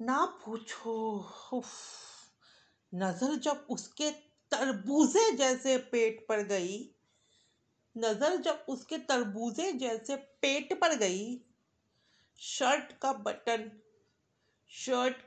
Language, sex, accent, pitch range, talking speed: Hindi, female, native, 215-320 Hz, 85 wpm